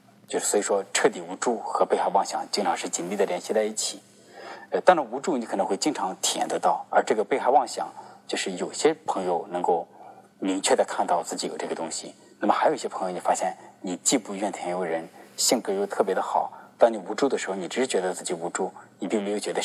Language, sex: Chinese, male